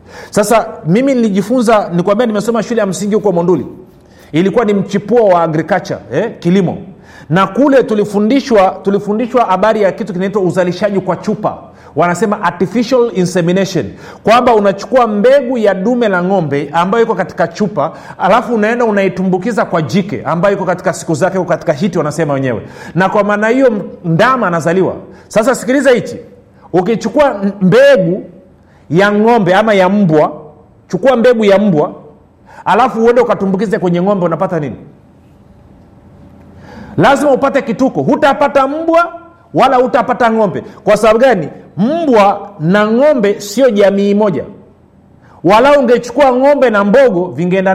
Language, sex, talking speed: Swahili, male, 135 wpm